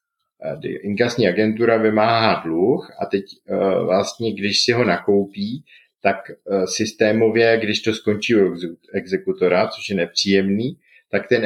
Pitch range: 105-130 Hz